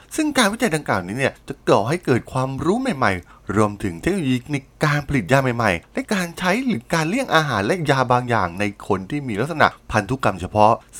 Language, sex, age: Thai, male, 20-39